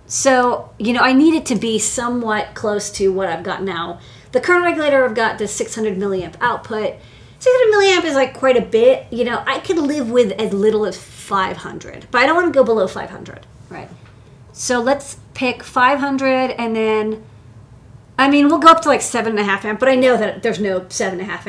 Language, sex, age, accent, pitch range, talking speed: English, female, 40-59, American, 210-265 Hz, 215 wpm